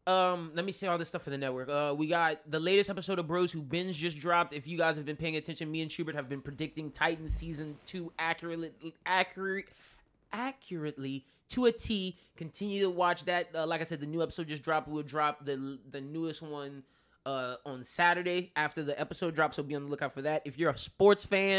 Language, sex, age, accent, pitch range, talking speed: English, male, 20-39, American, 145-170 Hz, 230 wpm